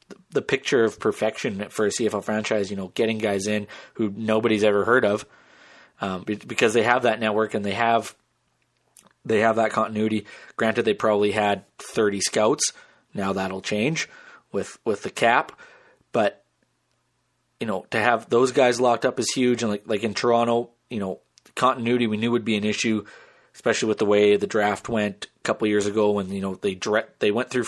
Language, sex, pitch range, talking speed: English, male, 105-115 Hz, 195 wpm